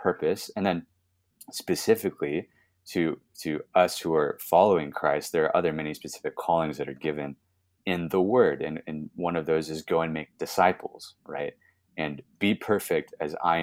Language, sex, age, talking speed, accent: English, male, 30-49, 170 wpm, American